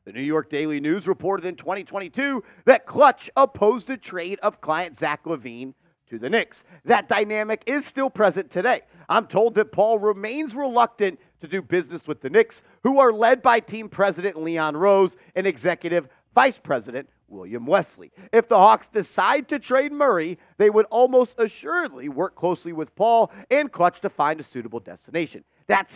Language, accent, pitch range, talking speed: English, American, 165-255 Hz, 175 wpm